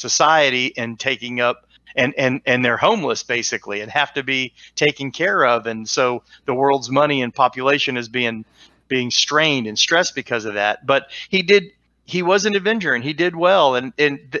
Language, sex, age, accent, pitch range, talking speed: English, male, 40-59, American, 130-175 Hz, 190 wpm